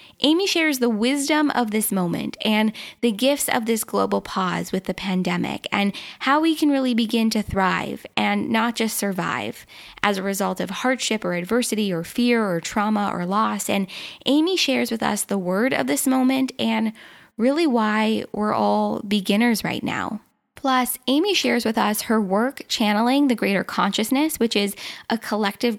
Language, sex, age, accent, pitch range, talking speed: English, female, 10-29, American, 195-245 Hz, 175 wpm